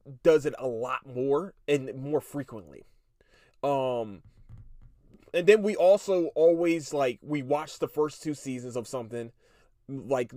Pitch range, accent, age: 125-175 Hz, American, 20-39